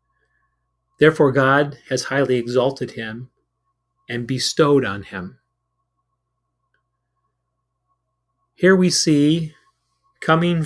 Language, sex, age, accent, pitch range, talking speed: English, male, 30-49, American, 120-150 Hz, 80 wpm